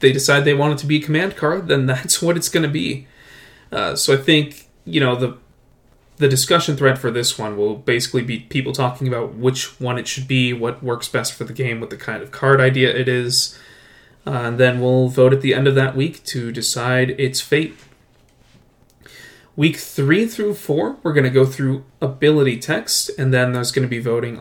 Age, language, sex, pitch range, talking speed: 20-39, English, male, 125-140 Hz, 215 wpm